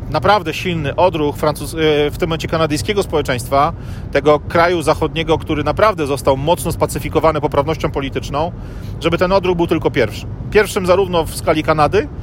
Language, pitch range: Polish, 135-165 Hz